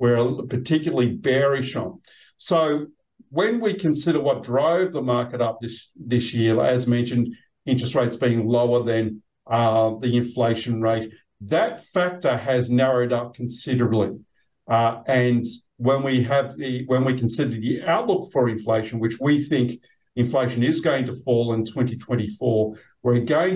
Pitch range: 120-150 Hz